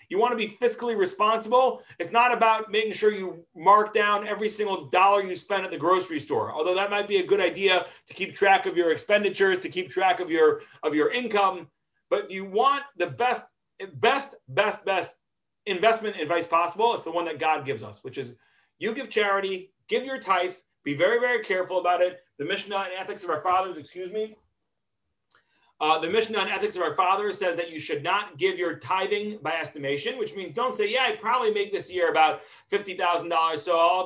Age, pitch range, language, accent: 40-59, 175-235 Hz, English, American